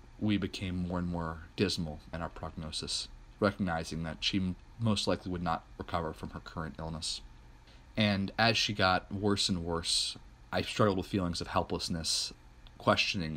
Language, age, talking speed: English, 30-49, 155 wpm